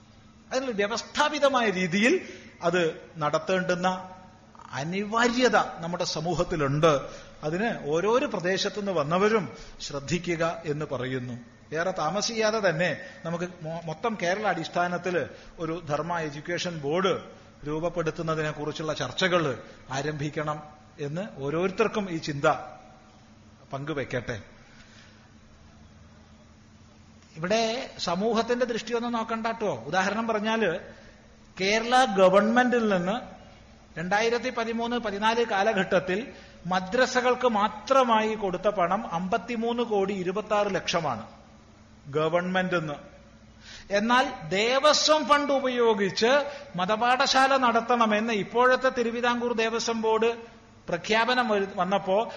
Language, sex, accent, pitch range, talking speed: Malayalam, male, native, 150-225 Hz, 80 wpm